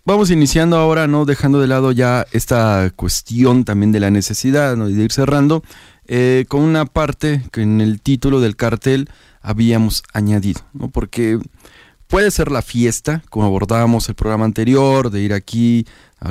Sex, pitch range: male, 110-145 Hz